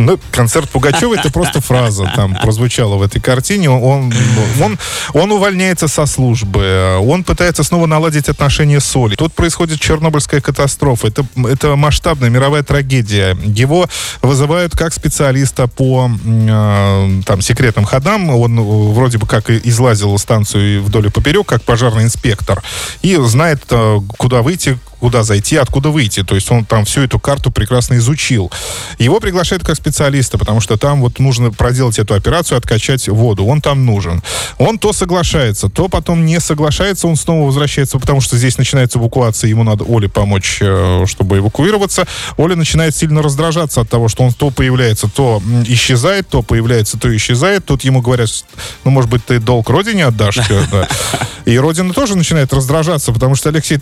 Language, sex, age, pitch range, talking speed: Russian, male, 20-39, 115-150 Hz, 160 wpm